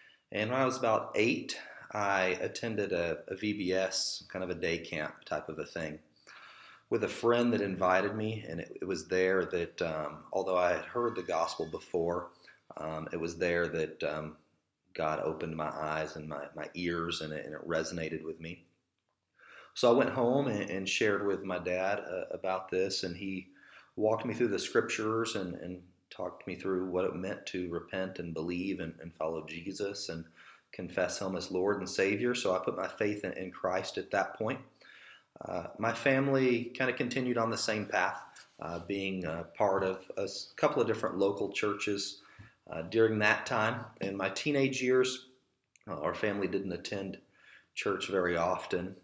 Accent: American